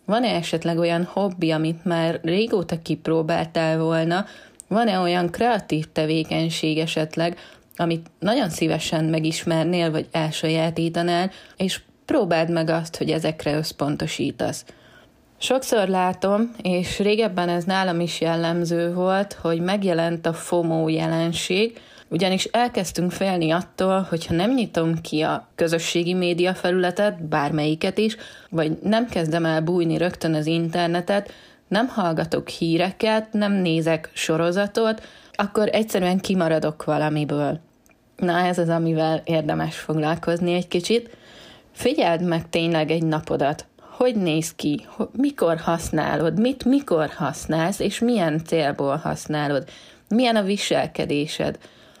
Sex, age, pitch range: female, 20-39, 160-190 Hz